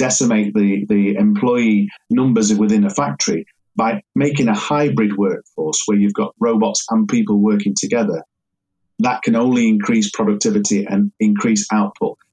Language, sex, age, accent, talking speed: English, male, 40-59, British, 140 wpm